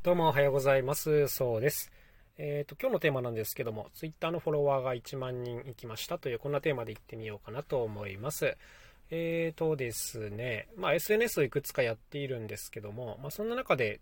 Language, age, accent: Japanese, 20-39, native